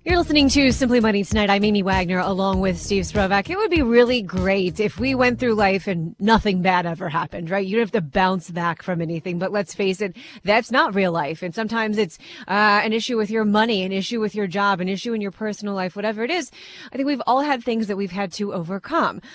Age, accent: 30-49, American